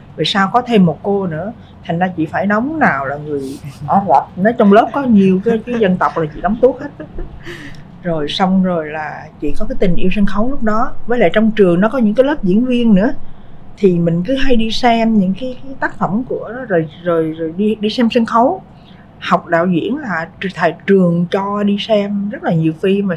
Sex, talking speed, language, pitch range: female, 235 wpm, Vietnamese, 170-225 Hz